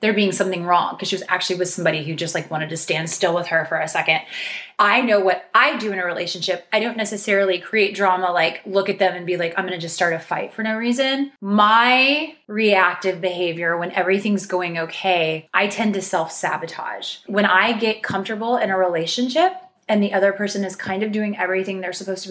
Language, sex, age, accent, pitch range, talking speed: English, female, 20-39, American, 180-220 Hz, 220 wpm